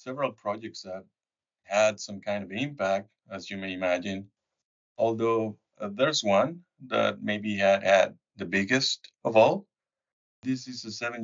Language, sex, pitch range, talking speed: English, male, 95-110 Hz, 145 wpm